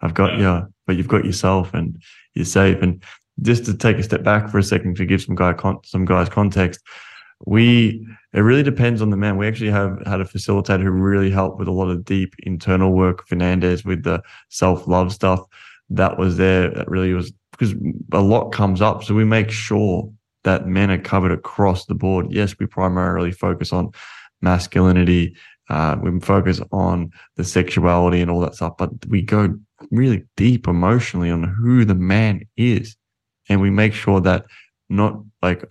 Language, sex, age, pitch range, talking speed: English, male, 20-39, 90-105 Hz, 190 wpm